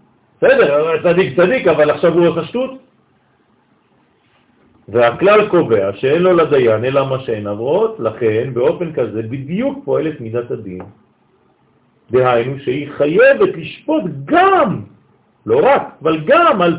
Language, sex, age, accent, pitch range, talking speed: French, male, 50-69, Indian, 130-205 Hz, 125 wpm